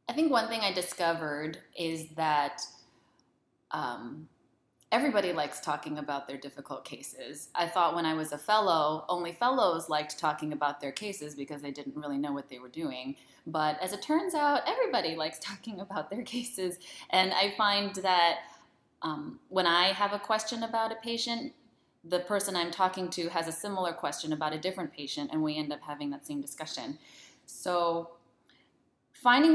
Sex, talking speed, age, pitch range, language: female, 175 wpm, 20-39, 150-190 Hz, English